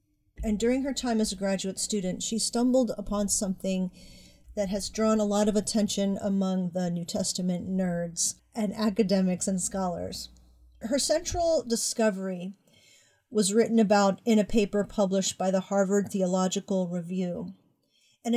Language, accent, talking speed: English, American, 145 wpm